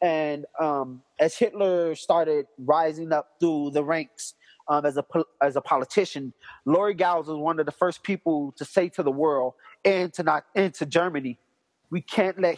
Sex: male